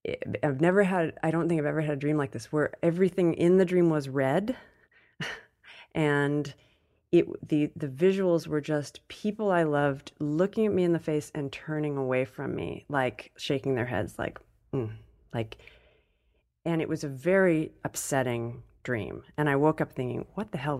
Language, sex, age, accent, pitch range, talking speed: English, female, 30-49, American, 125-160 Hz, 180 wpm